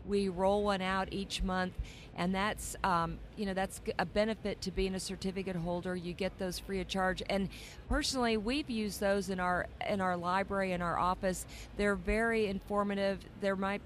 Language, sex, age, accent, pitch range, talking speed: English, female, 40-59, American, 180-205 Hz, 185 wpm